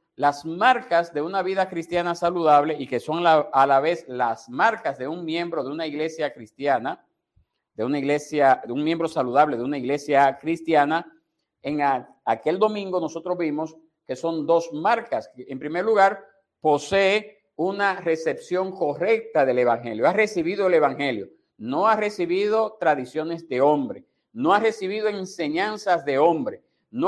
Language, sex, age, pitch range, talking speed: Spanish, male, 50-69, 155-205 Hz, 150 wpm